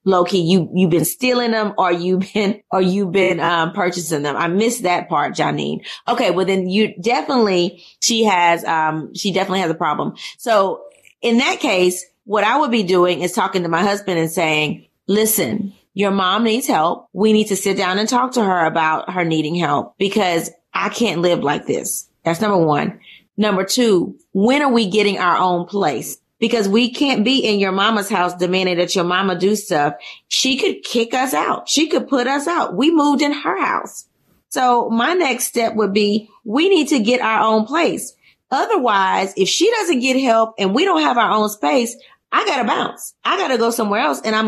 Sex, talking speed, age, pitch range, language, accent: female, 200 wpm, 30-49, 180-245 Hz, English, American